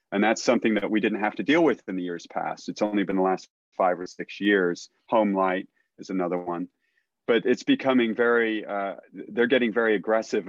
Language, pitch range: English, 95-115 Hz